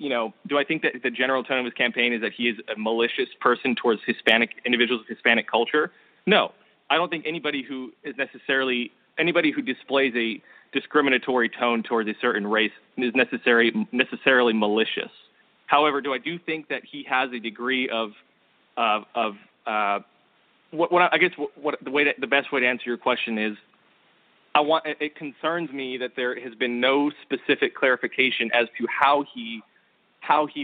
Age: 30-49